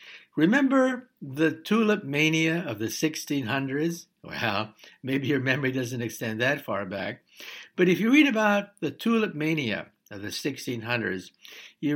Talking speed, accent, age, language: 140 wpm, American, 60-79, English